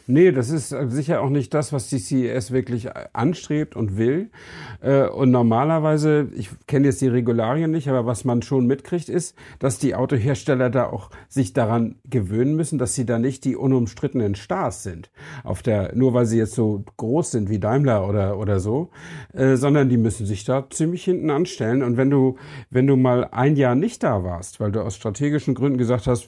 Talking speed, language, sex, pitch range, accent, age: 195 wpm, German, male, 120-140 Hz, German, 50-69